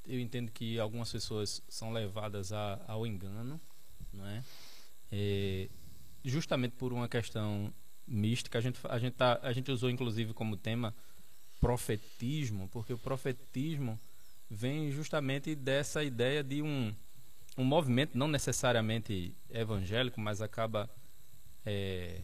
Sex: male